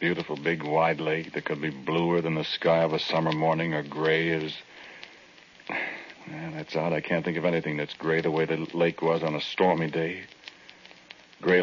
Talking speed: 190 wpm